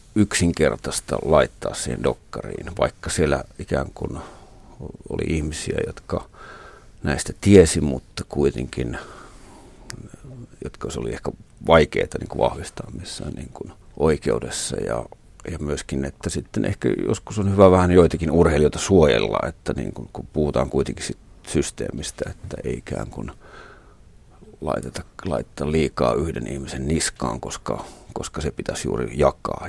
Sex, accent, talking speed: male, native, 125 wpm